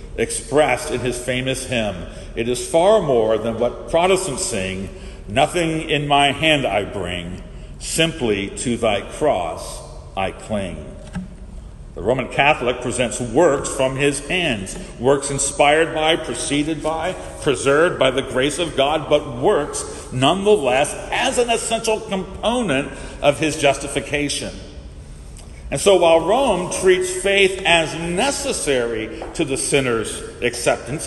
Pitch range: 120-180 Hz